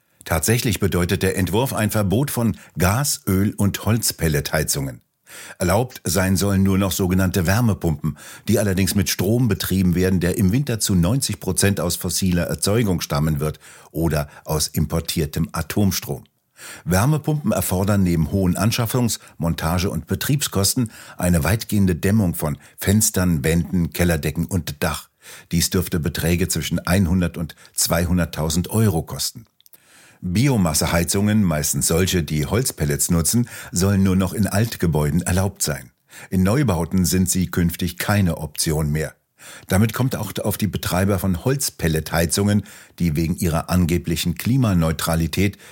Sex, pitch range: male, 85-105 Hz